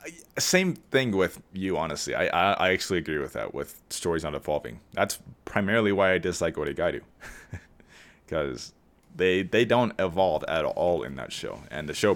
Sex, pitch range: male, 75-95 Hz